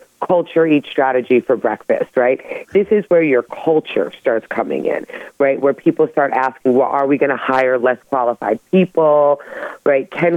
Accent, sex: American, female